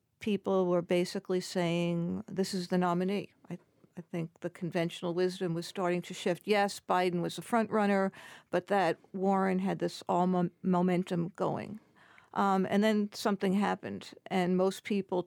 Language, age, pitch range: English, 50-69, 175-195 Hz